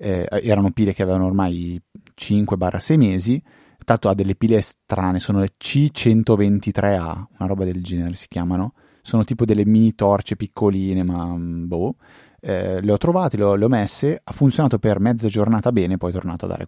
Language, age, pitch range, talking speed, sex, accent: Italian, 20-39, 95-110 Hz, 175 wpm, male, native